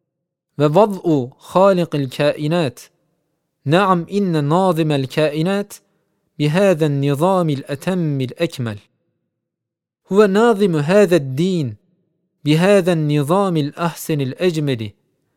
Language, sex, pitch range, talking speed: Turkish, male, 150-185 Hz, 75 wpm